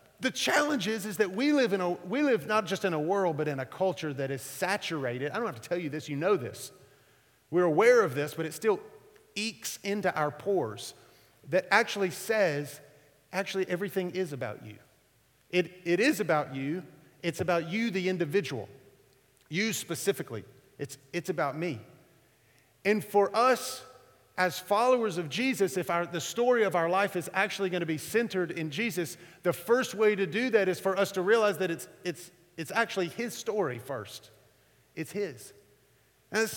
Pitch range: 160-220 Hz